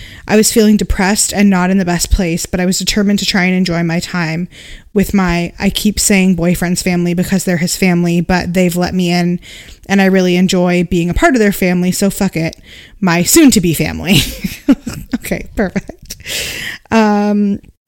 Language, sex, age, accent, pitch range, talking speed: English, female, 20-39, American, 180-220 Hz, 190 wpm